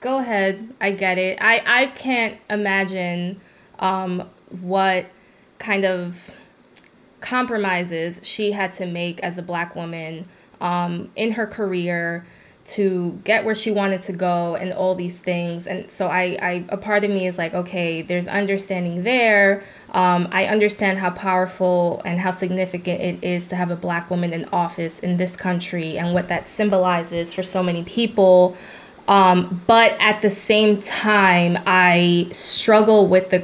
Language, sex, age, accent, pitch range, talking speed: English, female, 20-39, American, 180-200 Hz, 155 wpm